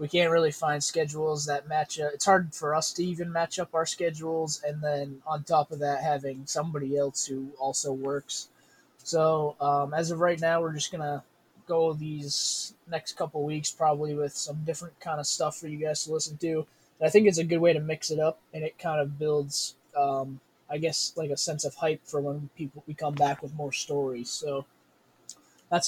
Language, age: English, 20-39